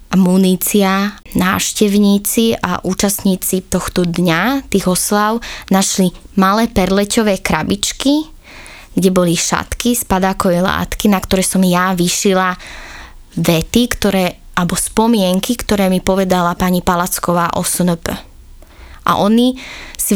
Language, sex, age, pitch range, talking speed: Slovak, female, 20-39, 185-205 Hz, 110 wpm